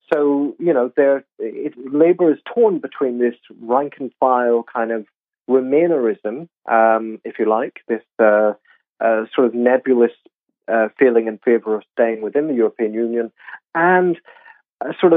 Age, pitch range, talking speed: 40-59, 115-145 Hz, 140 wpm